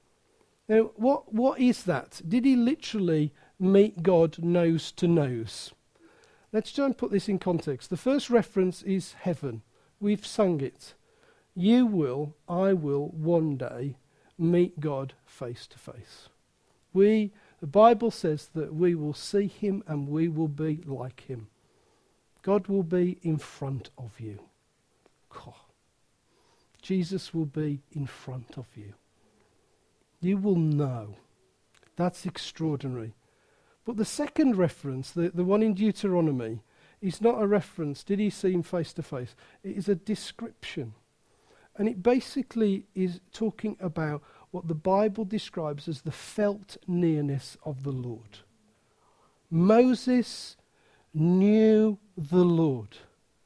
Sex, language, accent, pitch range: male, English, British, 145-205 Hz